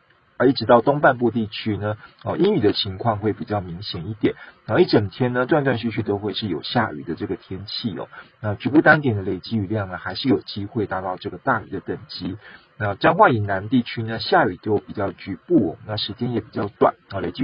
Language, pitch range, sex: Chinese, 100-120 Hz, male